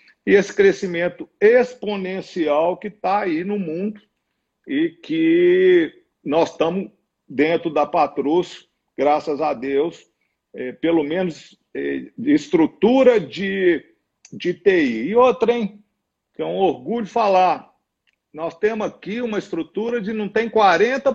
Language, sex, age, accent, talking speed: Portuguese, male, 50-69, Brazilian, 130 wpm